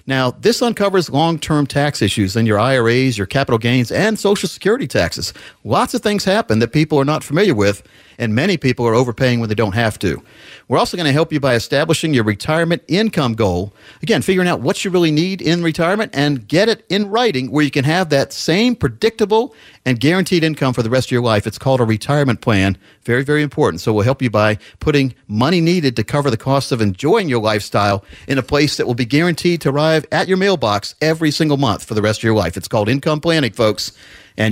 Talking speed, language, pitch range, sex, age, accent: 225 wpm, English, 115-165 Hz, male, 50-69, American